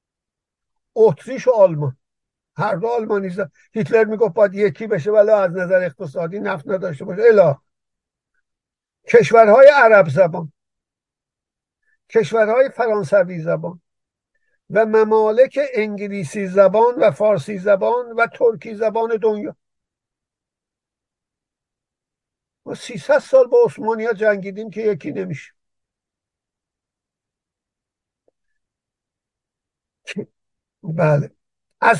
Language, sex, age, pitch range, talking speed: Persian, male, 50-69, 185-235 Hz, 90 wpm